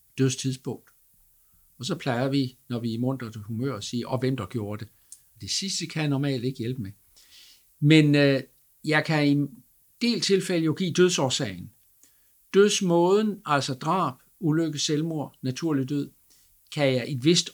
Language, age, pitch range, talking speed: Danish, 60-79, 125-155 Hz, 170 wpm